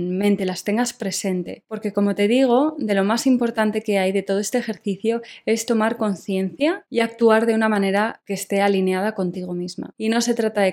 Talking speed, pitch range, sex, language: 200 wpm, 195-235 Hz, female, Spanish